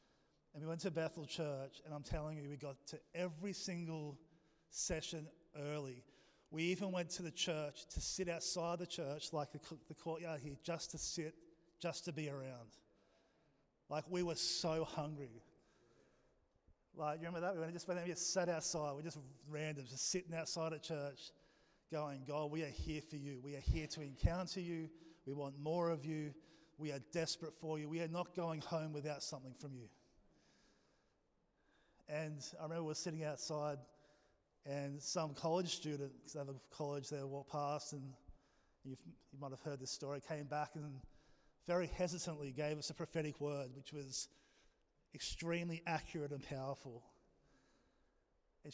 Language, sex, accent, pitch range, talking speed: English, male, Australian, 140-165 Hz, 175 wpm